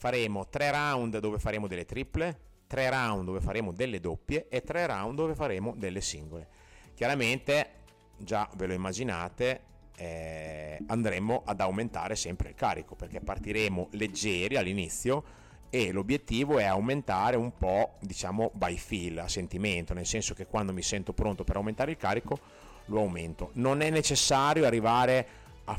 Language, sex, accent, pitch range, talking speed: Italian, male, native, 95-125 Hz, 150 wpm